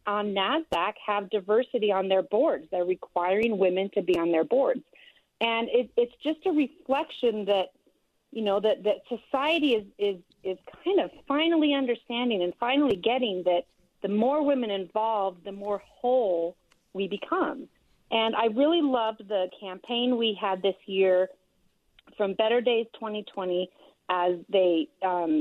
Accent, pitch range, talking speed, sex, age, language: American, 185-250 Hz, 150 wpm, female, 40-59, English